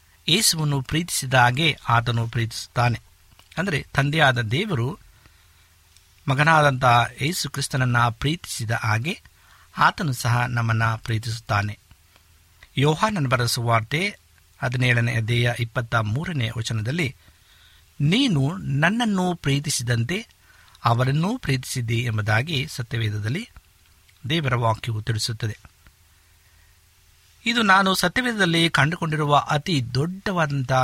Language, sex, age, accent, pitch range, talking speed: Kannada, male, 50-69, native, 105-155 Hz, 75 wpm